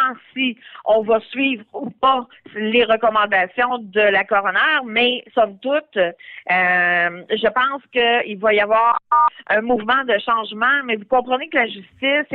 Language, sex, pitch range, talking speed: French, female, 220-275 Hz, 150 wpm